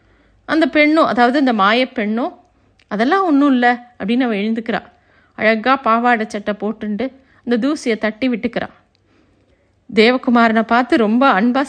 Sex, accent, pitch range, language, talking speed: female, native, 225-285 Hz, Tamil, 125 wpm